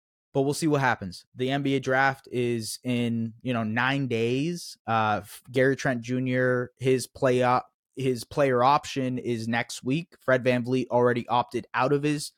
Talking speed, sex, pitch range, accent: 175 wpm, male, 120-150 Hz, American